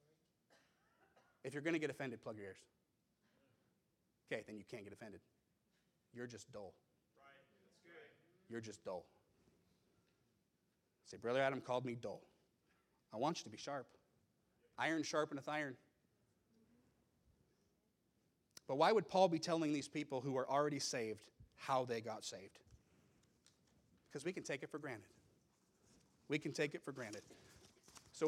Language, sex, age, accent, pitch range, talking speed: English, male, 30-49, American, 120-155 Hz, 140 wpm